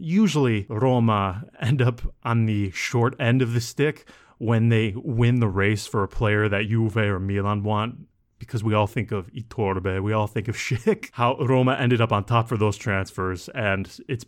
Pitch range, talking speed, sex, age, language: 105-130 Hz, 195 wpm, male, 30-49, English